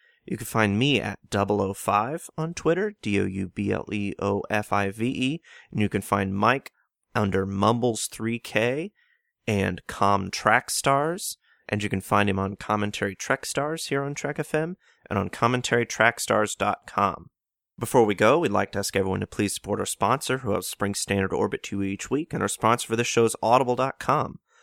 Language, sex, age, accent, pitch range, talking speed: English, male, 30-49, American, 100-120 Hz, 150 wpm